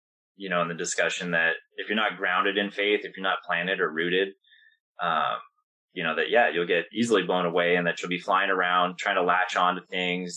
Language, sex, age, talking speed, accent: English, male, 20-39, 230 wpm, American